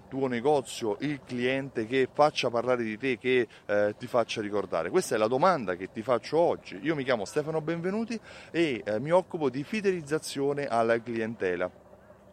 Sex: male